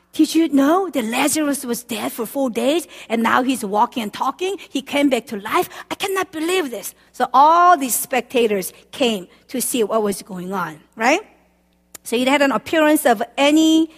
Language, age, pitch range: Korean, 50-69, 210-285 Hz